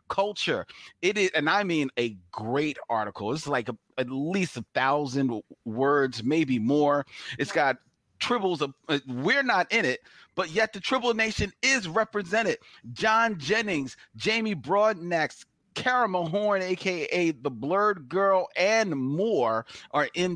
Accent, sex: American, male